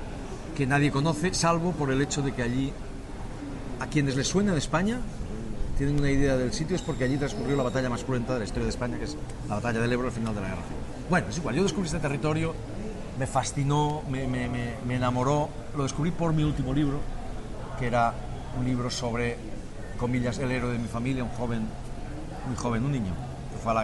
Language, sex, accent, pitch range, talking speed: Spanish, male, Spanish, 115-140 Hz, 215 wpm